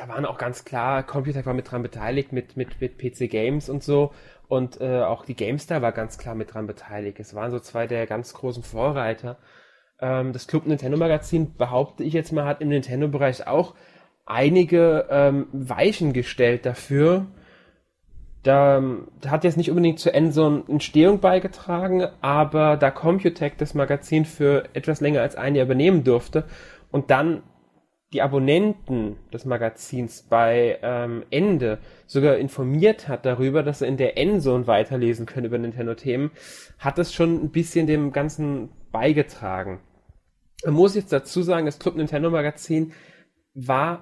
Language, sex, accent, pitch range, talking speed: German, male, German, 120-155 Hz, 160 wpm